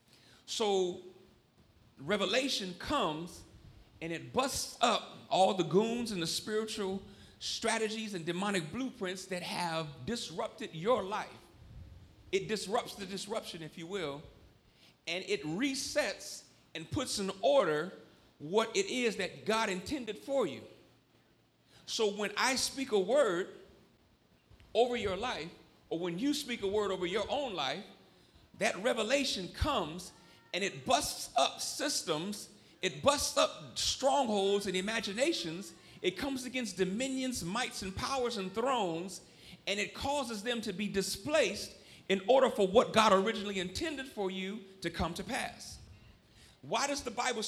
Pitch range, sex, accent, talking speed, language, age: 185-250 Hz, male, American, 140 wpm, English, 40-59